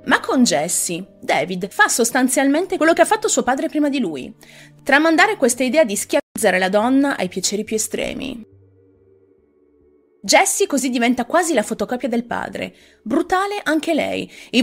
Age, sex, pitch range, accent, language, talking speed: 30-49, female, 175-290 Hz, native, Italian, 155 wpm